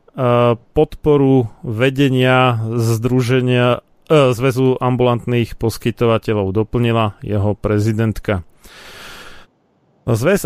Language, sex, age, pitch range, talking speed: Slovak, male, 40-59, 115-145 Hz, 55 wpm